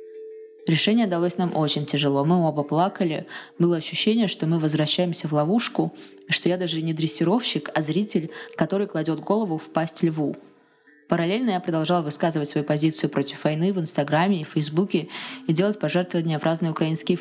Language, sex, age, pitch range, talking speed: Russian, female, 20-39, 155-195 Hz, 160 wpm